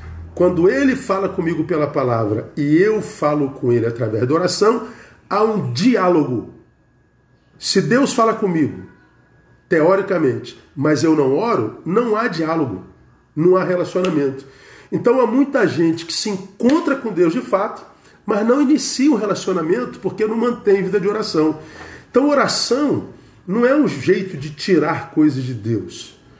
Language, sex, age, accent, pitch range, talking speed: Portuguese, male, 40-59, Brazilian, 130-185 Hz, 150 wpm